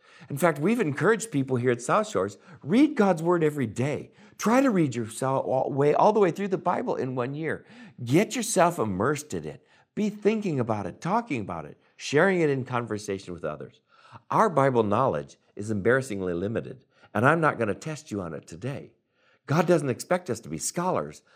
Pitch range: 120-195 Hz